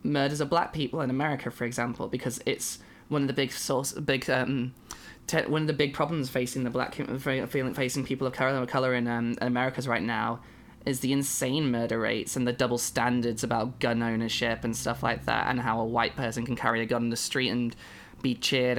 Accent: British